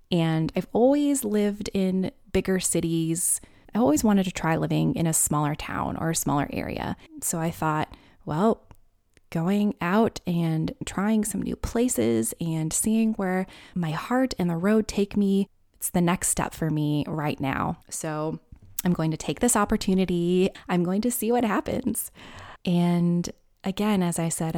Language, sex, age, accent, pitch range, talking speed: English, female, 20-39, American, 160-200 Hz, 165 wpm